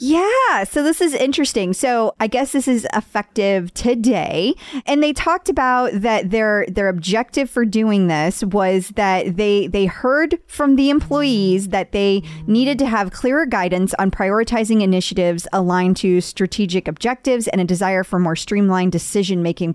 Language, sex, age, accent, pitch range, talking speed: English, female, 30-49, American, 185-225 Hz, 160 wpm